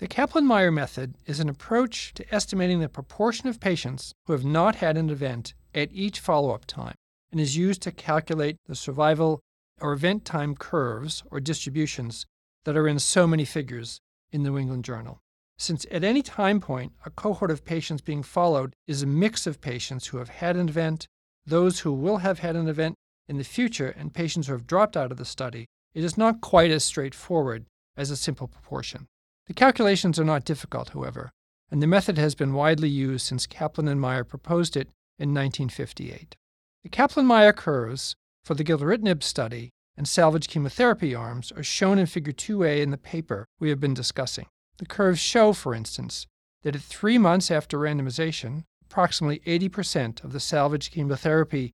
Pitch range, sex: 135-175 Hz, male